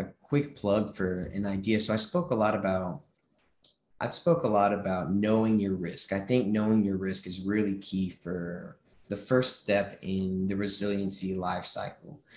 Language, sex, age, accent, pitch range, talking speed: English, male, 20-39, American, 95-110 Hz, 180 wpm